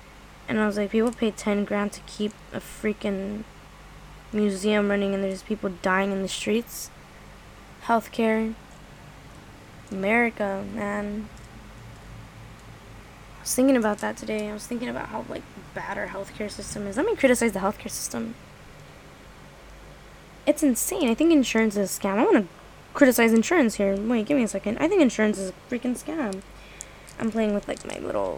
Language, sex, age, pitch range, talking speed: English, female, 10-29, 205-250 Hz, 165 wpm